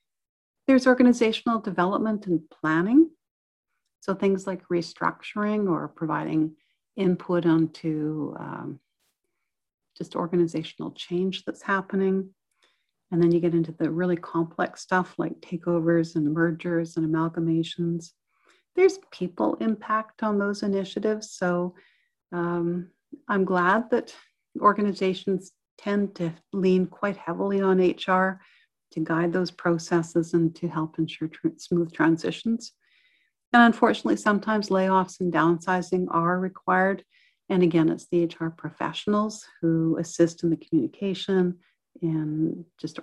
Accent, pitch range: American, 165-195 Hz